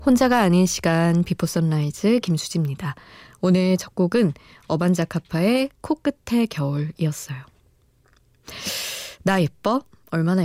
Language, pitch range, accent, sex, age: Korean, 160-210 Hz, native, female, 20-39